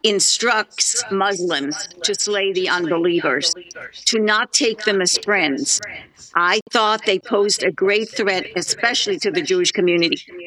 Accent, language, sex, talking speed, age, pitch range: American, English, female, 140 wpm, 50-69, 190-225 Hz